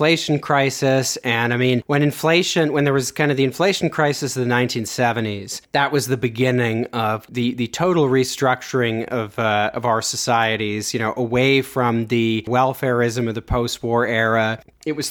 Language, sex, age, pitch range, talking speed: English, male, 30-49, 115-130 Hz, 180 wpm